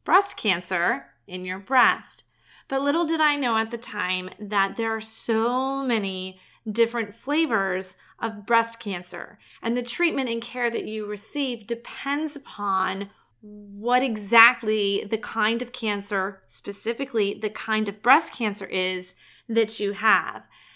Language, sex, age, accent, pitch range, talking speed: English, female, 30-49, American, 200-250 Hz, 140 wpm